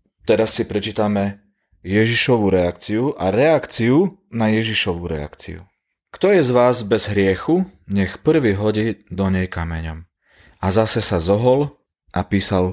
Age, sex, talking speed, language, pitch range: 30-49, male, 130 wpm, Slovak, 90-110 Hz